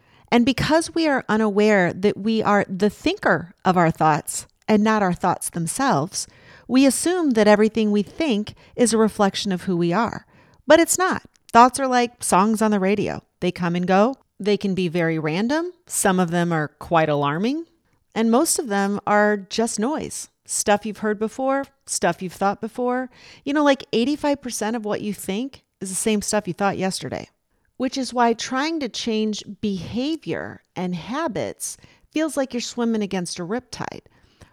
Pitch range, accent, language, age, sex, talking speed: 185-255 Hz, American, English, 40-59, female, 175 wpm